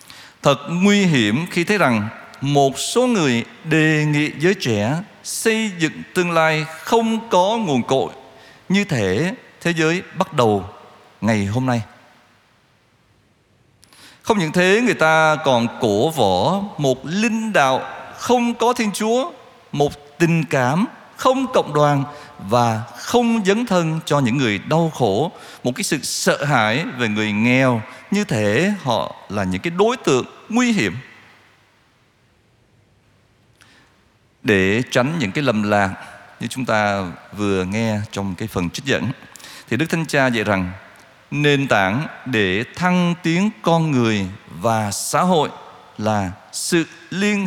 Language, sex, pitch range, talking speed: Vietnamese, male, 115-180 Hz, 145 wpm